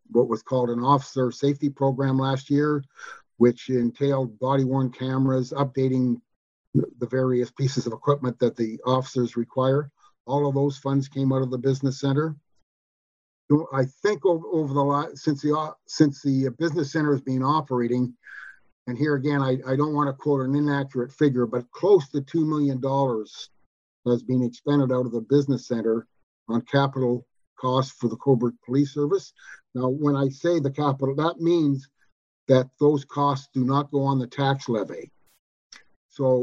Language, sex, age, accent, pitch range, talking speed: English, male, 50-69, American, 125-145 Hz, 170 wpm